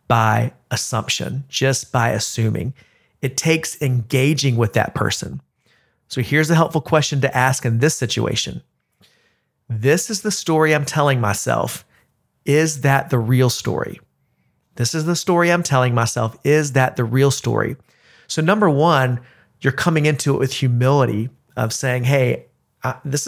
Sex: male